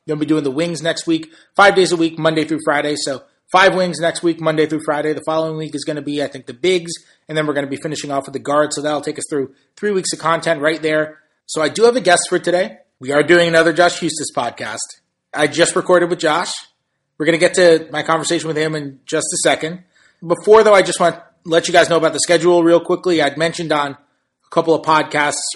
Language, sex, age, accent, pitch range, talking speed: English, male, 30-49, American, 140-170 Hz, 260 wpm